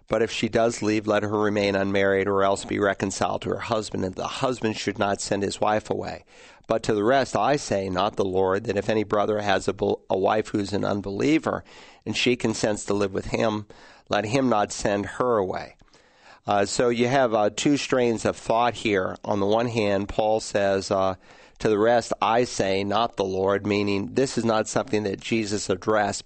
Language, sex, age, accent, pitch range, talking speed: English, male, 40-59, American, 100-115 Hz, 210 wpm